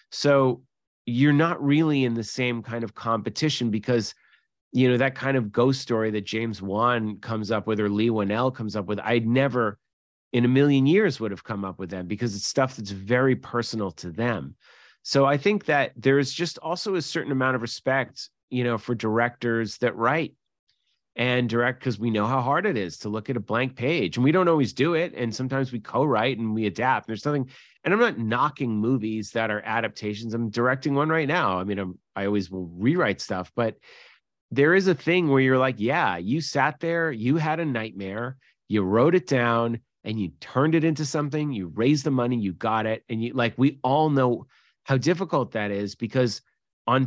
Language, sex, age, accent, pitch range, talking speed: English, male, 30-49, American, 110-140 Hz, 210 wpm